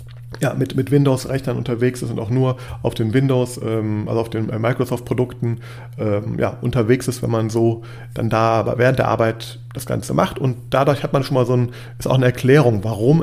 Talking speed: 205 wpm